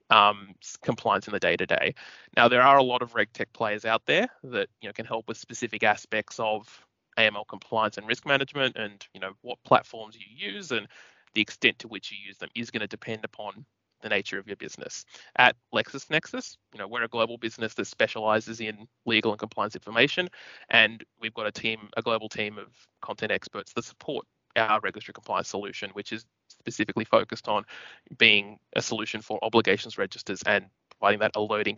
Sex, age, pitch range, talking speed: male, 20-39, 110-120 Hz, 195 wpm